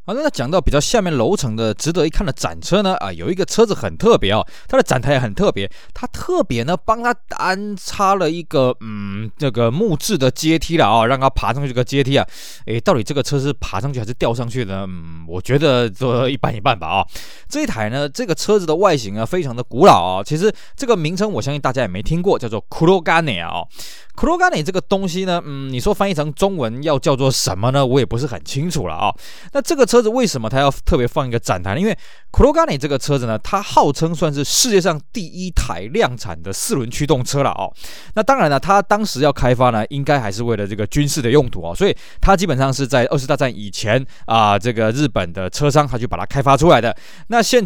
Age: 20-39